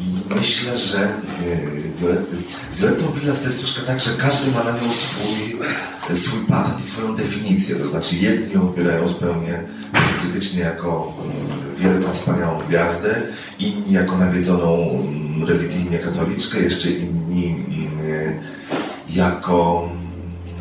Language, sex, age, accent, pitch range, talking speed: Polish, male, 40-59, native, 85-115 Hz, 110 wpm